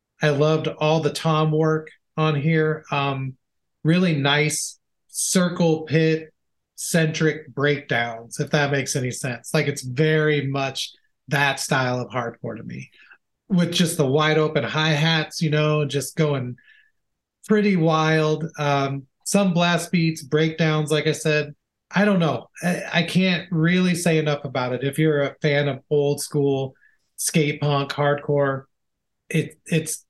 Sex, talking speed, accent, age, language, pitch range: male, 150 wpm, American, 30-49, English, 140-165 Hz